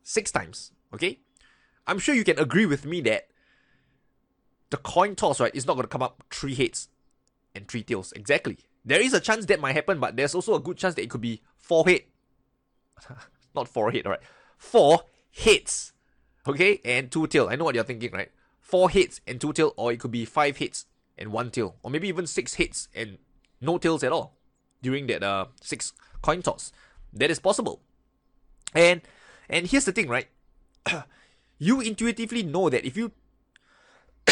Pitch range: 125-175 Hz